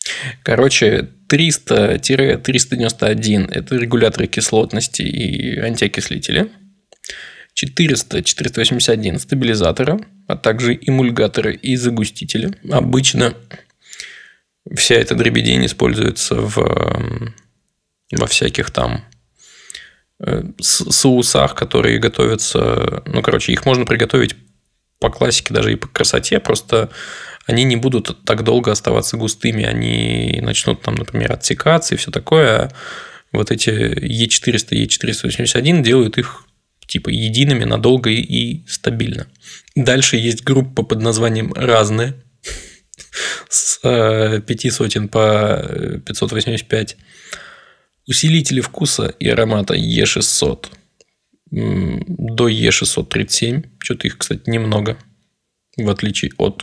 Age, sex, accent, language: 20-39, male, native, Russian